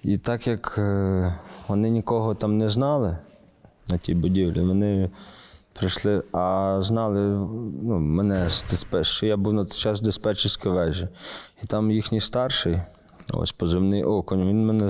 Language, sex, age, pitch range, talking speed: Russian, male, 20-39, 95-110 Hz, 145 wpm